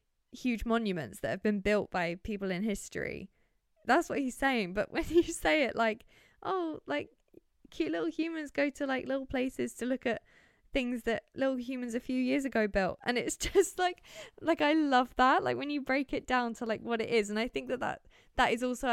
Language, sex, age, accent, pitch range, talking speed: English, female, 20-39, British, 210-280 Hz, 220 wpm